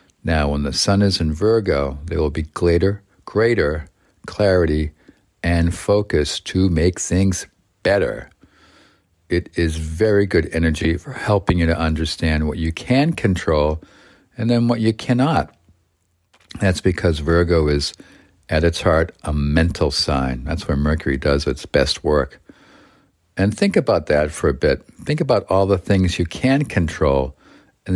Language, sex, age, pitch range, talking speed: English, male, 50-69, 80-95 Hz, 150 wpm